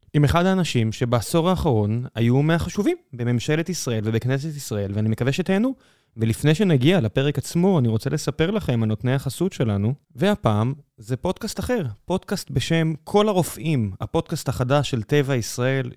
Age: 20-39